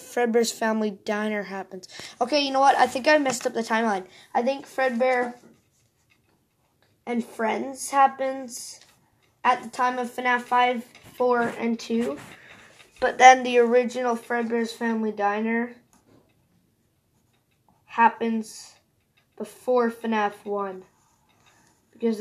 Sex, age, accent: female, 20-39, American